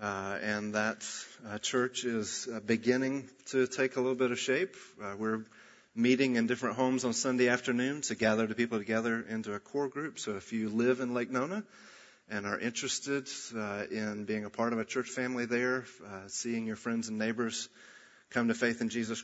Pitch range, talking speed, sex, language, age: 110-130 Hz, 200 wpm, male, English, 40-59